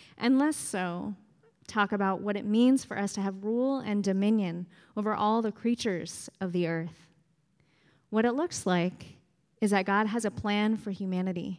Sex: female